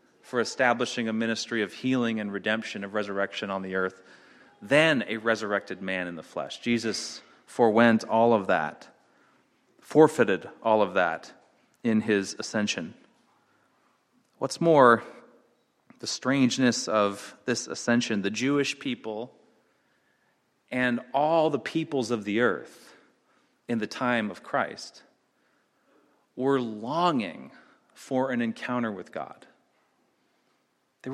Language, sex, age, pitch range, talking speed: English, male, 30-49, 110-140 Hz, 120 wpm